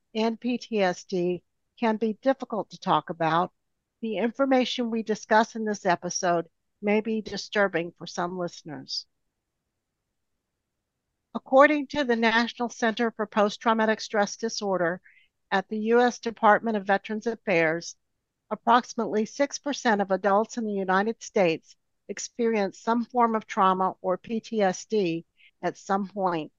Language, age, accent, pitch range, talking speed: English, 60-79, American, 180-230 Hz, 125 wpm